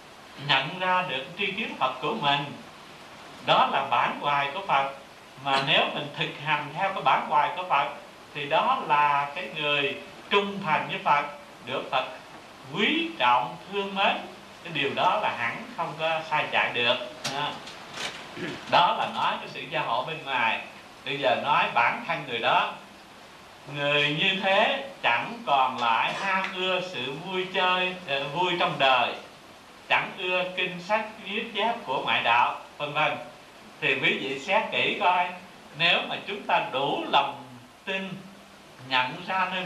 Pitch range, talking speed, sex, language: 145-195 Hz, 165 wpm, male, Vietnamese